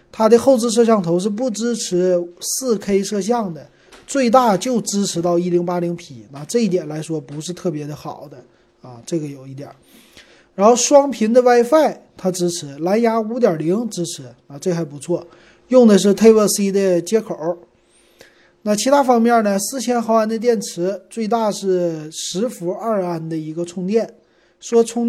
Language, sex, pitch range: Chinese, male, 170-230 Hz